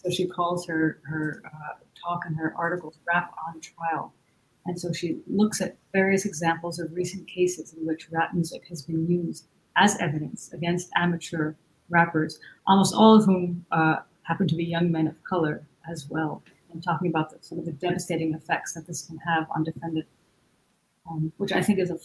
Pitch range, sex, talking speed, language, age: 160-180 Hz, female, 190 wpm, English, 40-59